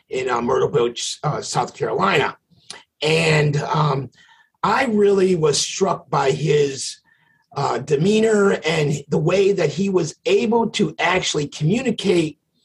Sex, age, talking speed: male, 50-69, 130 wpm